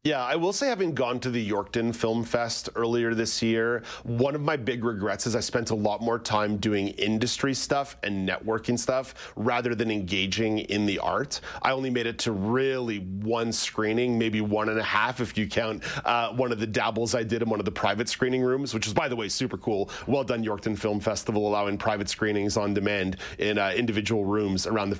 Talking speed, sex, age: 220 wpm, male, 40-59